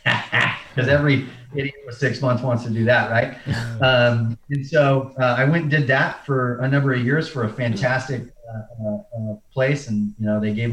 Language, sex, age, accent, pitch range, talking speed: English, male, 30-49, American, 100-120 Hz, 200 wpm